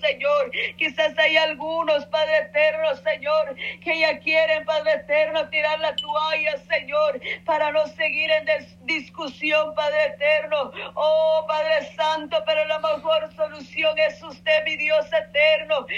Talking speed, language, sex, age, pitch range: 130 wpm, Spanish, female, 40-59, 300-315 Hz